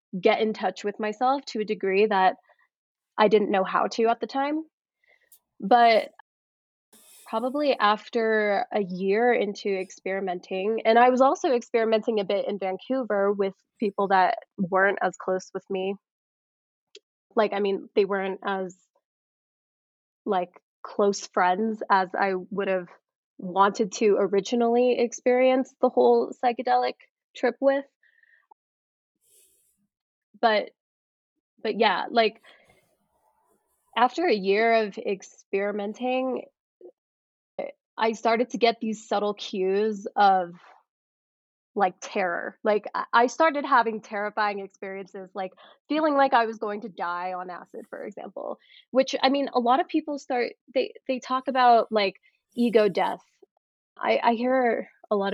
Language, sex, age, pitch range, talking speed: English, female, 20-39, 200-255 Hz, 130 wpm